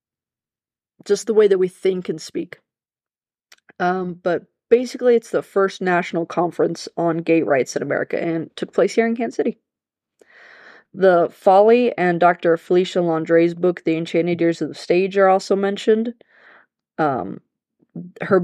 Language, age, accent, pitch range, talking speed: English, 20-39, American, 170-215 Hz, 150 wpm